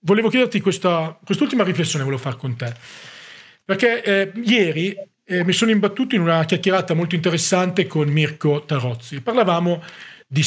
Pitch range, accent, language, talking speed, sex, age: 135-180 Hz, native, Italian, 145 wpm, male, 40-59